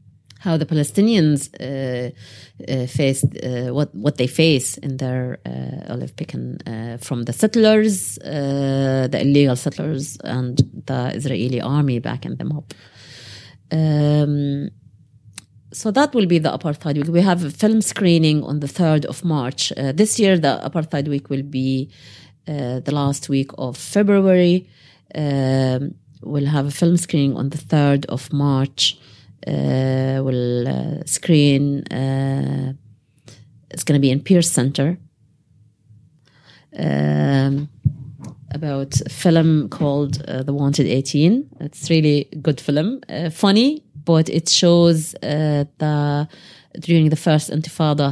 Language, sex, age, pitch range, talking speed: English, female, 30-49, 130-155 Hz, 135 wpm